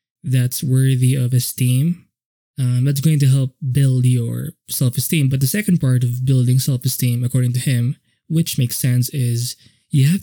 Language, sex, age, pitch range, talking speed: English, male, 20-39, 125-145 Hz, 165 wpm